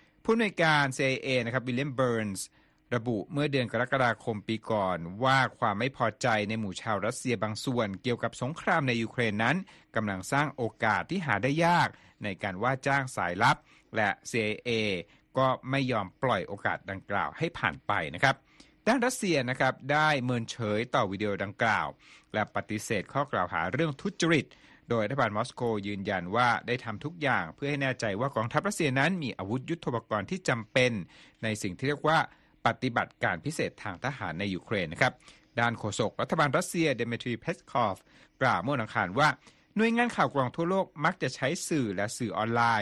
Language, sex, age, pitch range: Thai, male, 60-79, 110-150 Hz